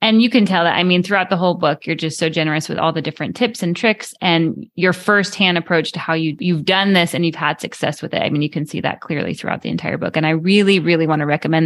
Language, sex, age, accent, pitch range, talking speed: English, female, 20-39, American, 165-215 Hz, 290 wpm